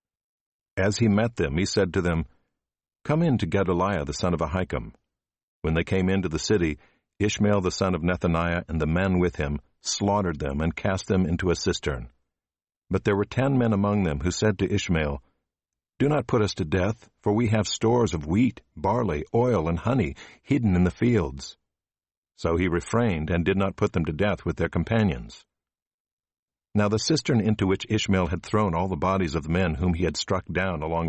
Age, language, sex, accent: 60-79, English, male, American